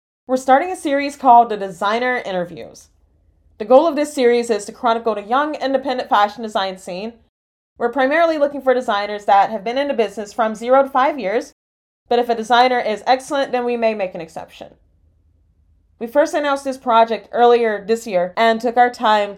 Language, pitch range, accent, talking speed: English, 200-255 Hz, American, 190 wpm